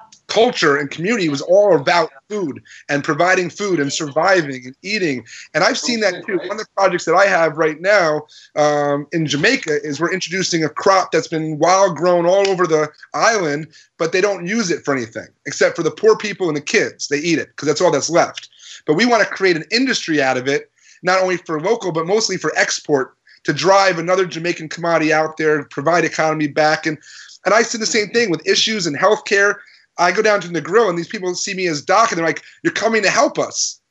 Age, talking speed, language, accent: 30-49, 225 wpm, English, American